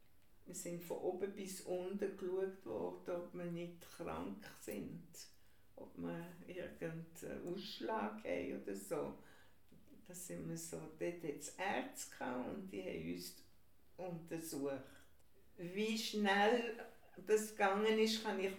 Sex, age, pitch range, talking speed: female, 60-79, 150-210 Hz, 130 wpm